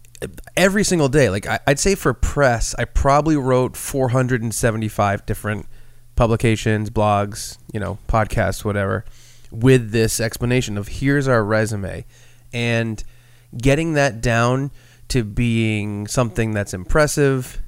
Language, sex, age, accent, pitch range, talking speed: English, male, 20-39, American, 110-140 Hz, 120 wpm